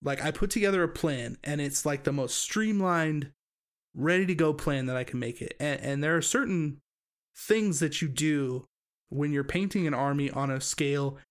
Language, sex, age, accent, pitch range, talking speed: English, male, 20-39, American, 135-165 Hz, 190 wpm